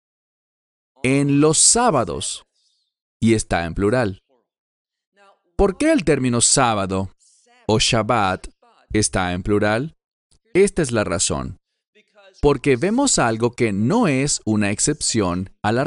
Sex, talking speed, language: male, 115 wpm, English